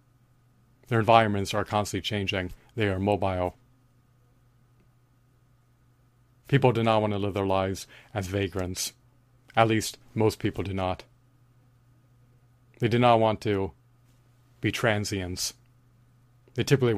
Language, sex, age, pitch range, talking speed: English, male, 40-59, 100-125 Hz, 115 wpm